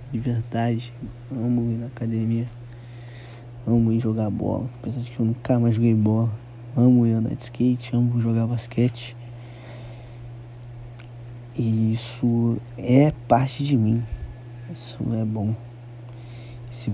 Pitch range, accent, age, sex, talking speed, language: 120-125 Hz, Brazilian, 20-39, male, 125 wpm, Portuguese